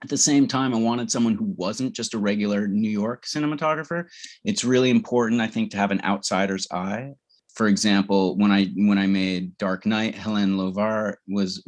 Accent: American